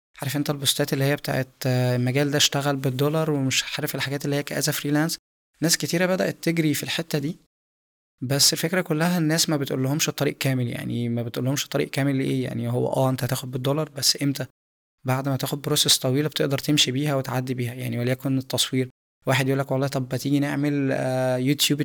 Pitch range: 130-150 Hz